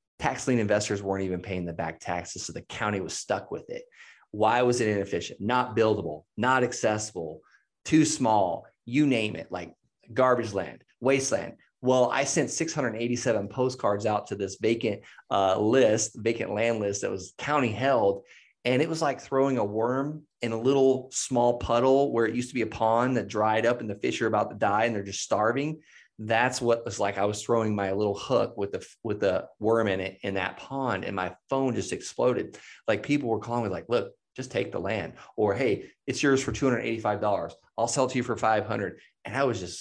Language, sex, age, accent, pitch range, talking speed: English, male, 30-49, American, 105-130 Hz, 205 wpm